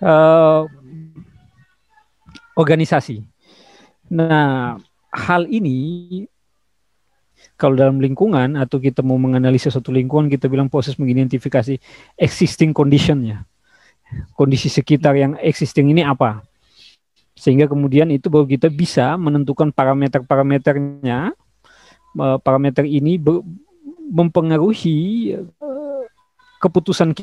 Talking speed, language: 90 wpm, Indonesian